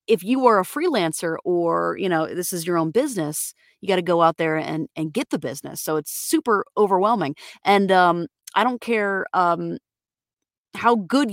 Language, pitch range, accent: English, 160-200 Hz, American